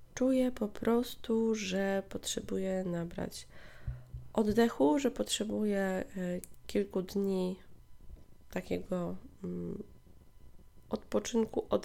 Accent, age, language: native, 20-39, Polish